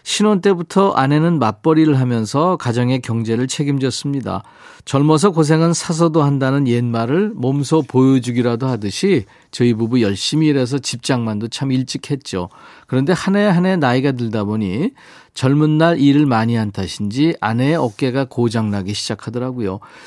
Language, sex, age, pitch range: Korean, male, 40-59, 115-155 Hz